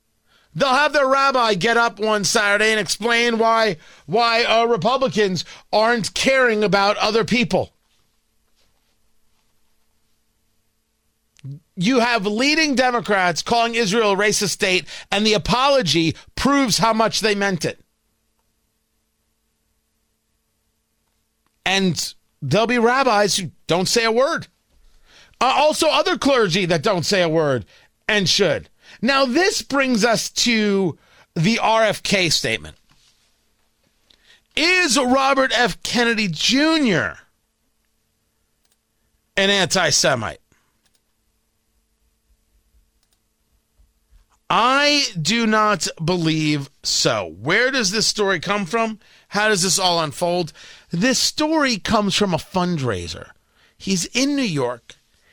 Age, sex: 40-59, male